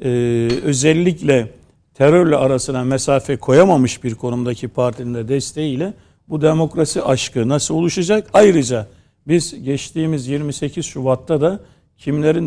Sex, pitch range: male, 120-150 Hz